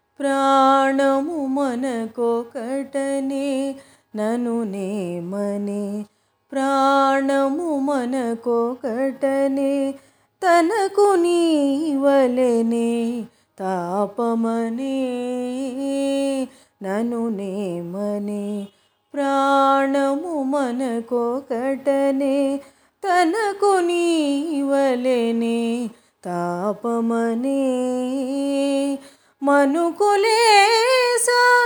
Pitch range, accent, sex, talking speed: 240-345 Hz, native, female, 30 wpm